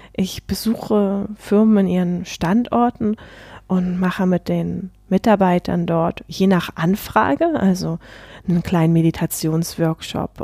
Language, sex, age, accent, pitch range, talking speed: German, female, 20-39, German, 185-220 Hz, 110 wpm